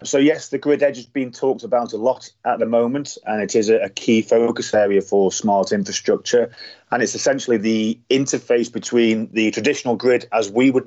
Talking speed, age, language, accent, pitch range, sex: 200 wpm, 30-49, English, British, 105-130 Hz, male